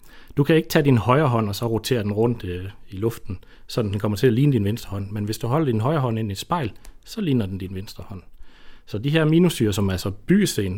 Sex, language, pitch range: male, Danish, 100-130 Hz